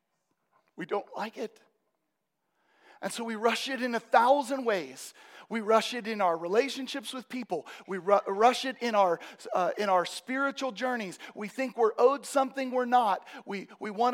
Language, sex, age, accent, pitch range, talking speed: English, male, 40-59, American, 175-240 Hz, 170 wpm